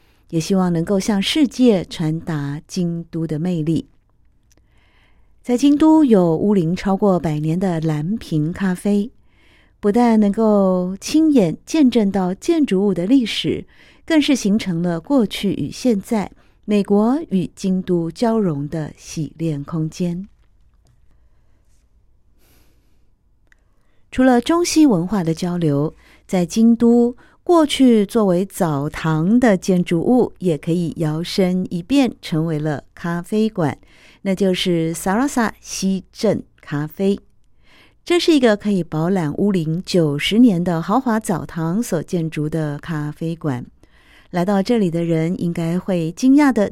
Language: Chinese